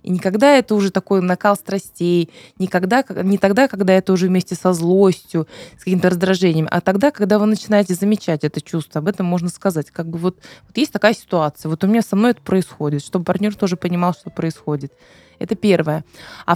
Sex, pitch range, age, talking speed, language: female, 165-200 Hz, 20-39, 200 wpm, Russian